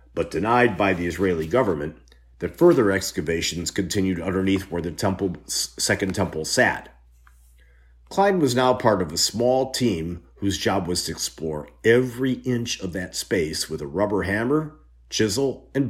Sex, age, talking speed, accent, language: male, 50-69, 155 wpm, American, English